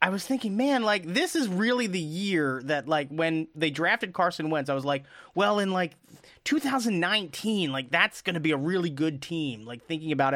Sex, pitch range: male, 150-210 Hz